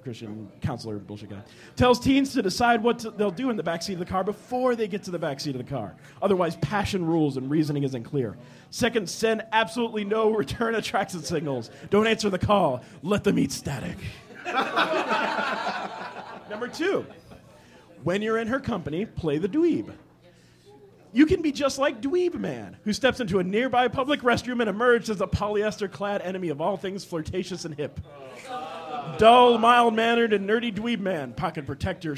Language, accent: English, American